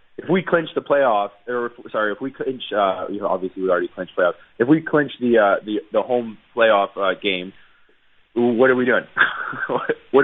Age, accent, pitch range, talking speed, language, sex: 20-39, American, 100-130 Hz, 205 wpm, English, male